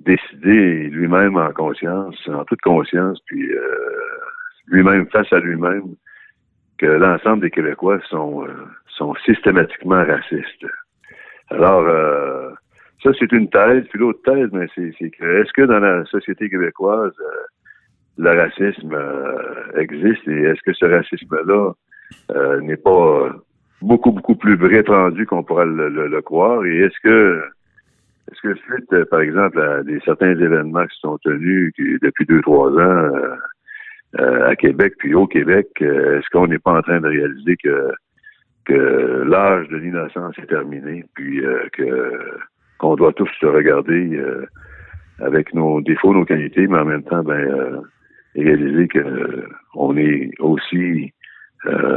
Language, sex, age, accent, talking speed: French, male, 60-79, French, 155 wpm